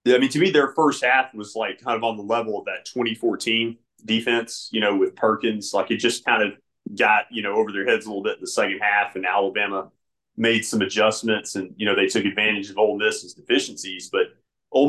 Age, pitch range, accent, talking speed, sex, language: 30-49, 105-125 Hz, American, 235 wpm, male, English